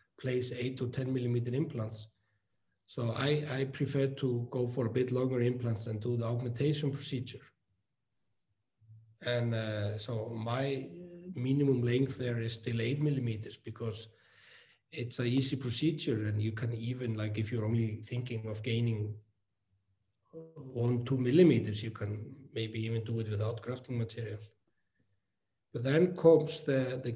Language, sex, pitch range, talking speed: English, male, 110-135 Hz, 145 wpm